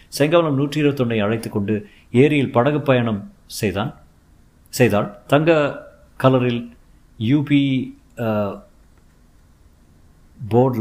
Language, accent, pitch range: Tamil, native, 100-150 Hz